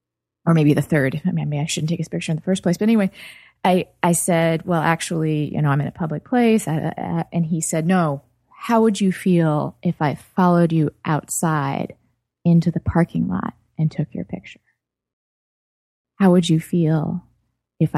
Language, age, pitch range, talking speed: English, 20-39, 145-180 Hz, 185 wpm